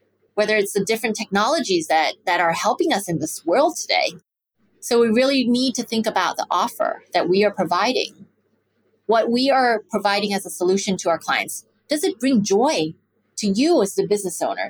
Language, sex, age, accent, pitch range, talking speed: English, female, 30-49, American, 185-240 Hz, 190 wpm